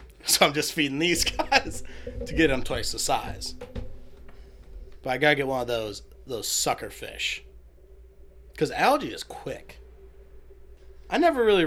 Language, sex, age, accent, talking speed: English, male, 30-49, American, 150 wpm